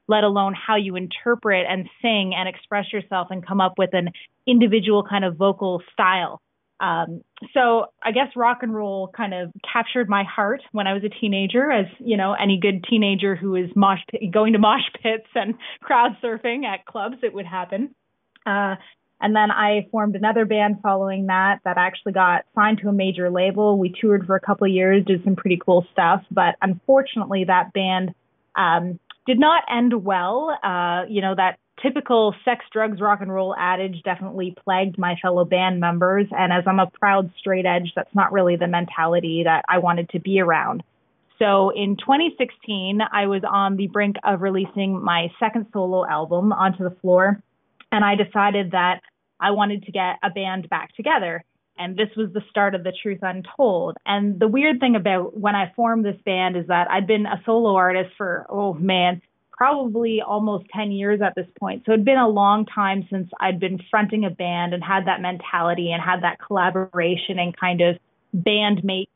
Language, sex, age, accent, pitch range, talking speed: English, female, 20-39, American, 185-215 Hz, 190 wpm